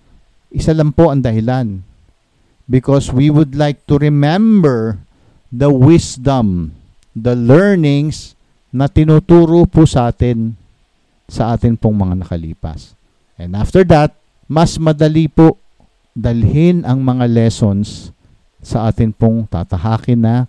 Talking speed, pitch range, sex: 115 wpm, 105-160 Hz, male